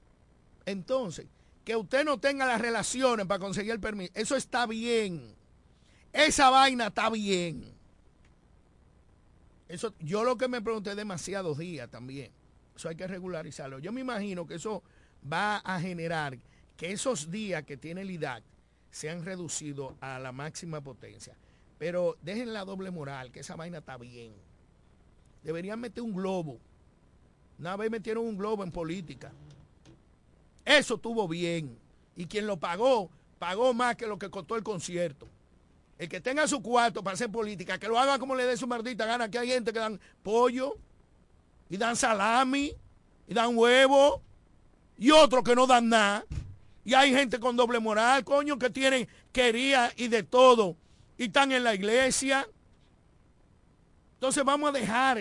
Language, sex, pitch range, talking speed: Spanish, male, 150-245 Hz, 160 wpm